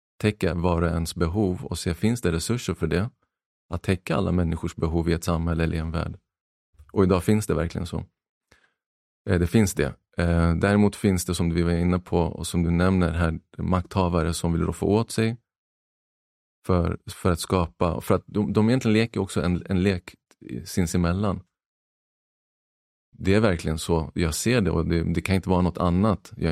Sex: male